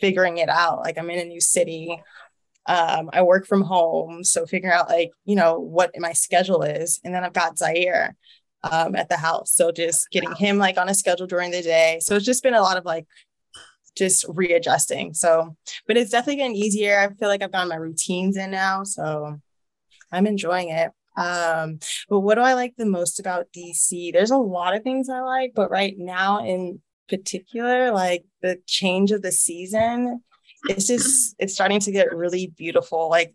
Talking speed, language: 200 wpm, English